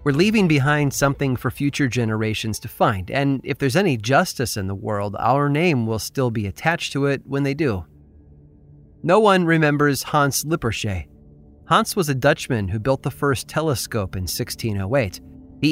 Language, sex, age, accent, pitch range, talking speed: English, male, 30-49, American, 110-150 Hz, 170 wpm